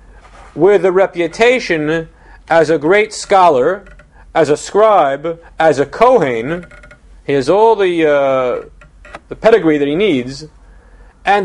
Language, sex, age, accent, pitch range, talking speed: English, male, 40-59, American, 140-195 Hz, 125 wpm